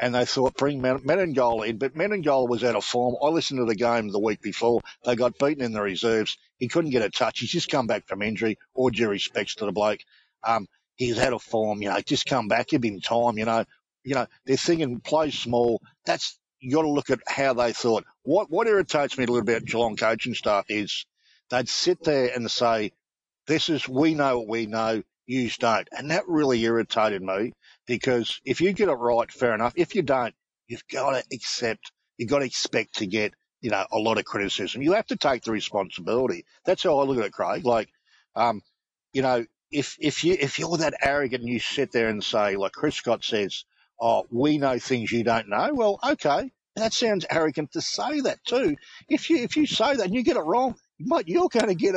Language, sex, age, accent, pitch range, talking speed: English, male, 50-69, Australian, 115-155 Hz, 225 wpm